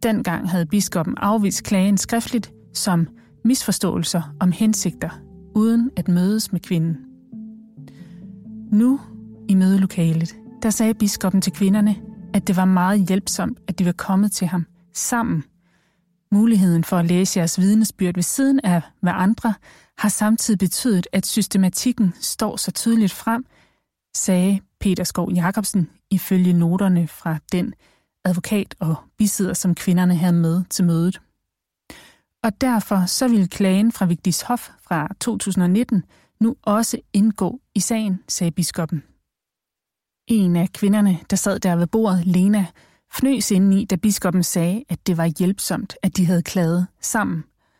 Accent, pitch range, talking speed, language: native, 175-215 Hz, 140 wpm, Danish